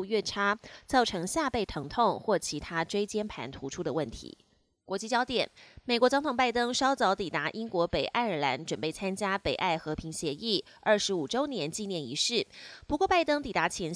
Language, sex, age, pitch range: Chinese, female, 20-39, 165-240 Hz